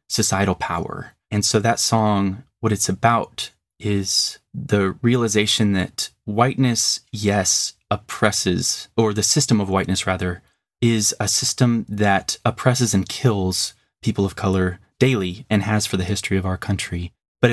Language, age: English, 20-39